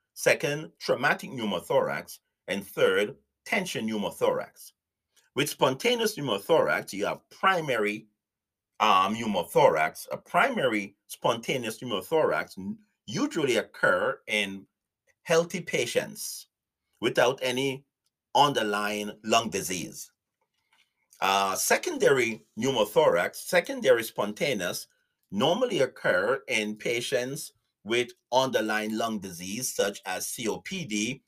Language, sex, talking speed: English, male, 85 wpm